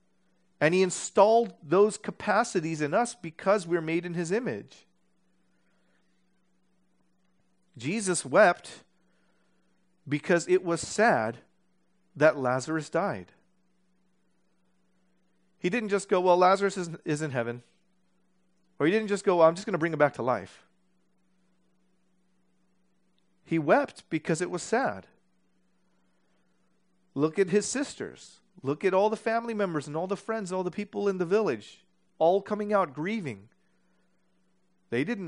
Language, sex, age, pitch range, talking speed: English, male, 40-59, 125-185 Hz, 135 wpm